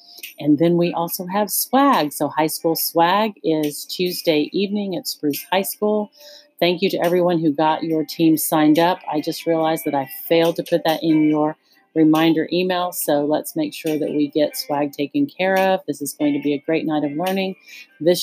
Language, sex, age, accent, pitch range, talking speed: English, female, 40-59, American, 150-180 Hz, 205 wpm